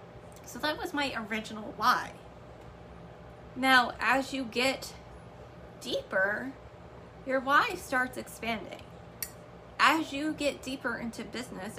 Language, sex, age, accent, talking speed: English, female, 20-39, American, 105 wpm